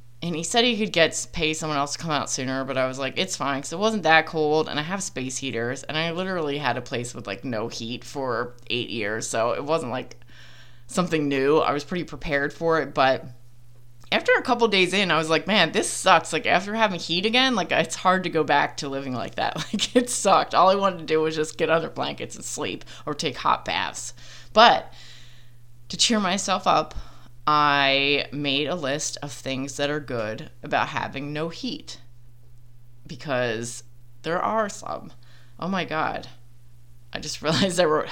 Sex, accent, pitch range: female, American, 120-170 Hz